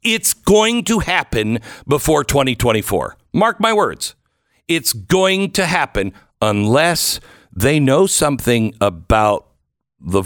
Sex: male